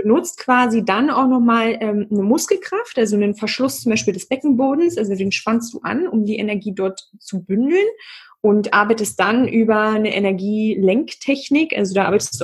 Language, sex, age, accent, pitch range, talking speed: German, female, 20-39, German, 195-235 Hz, 175 wpm